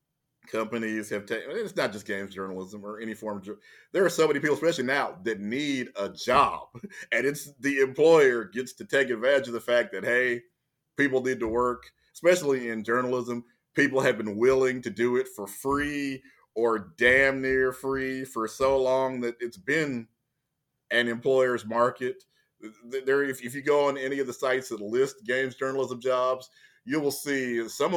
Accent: American